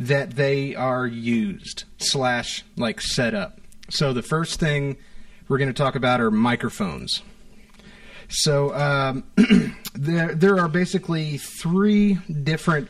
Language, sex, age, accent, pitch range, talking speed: English, male, 30-49, American, 125-200 Hz, 125 wpm